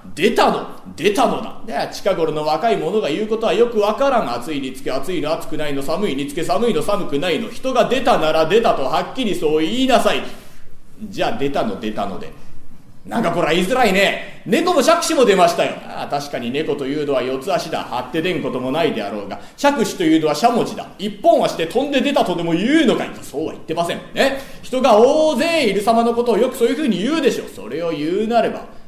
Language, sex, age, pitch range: Japanese, male, 40-59, 165-240 Hz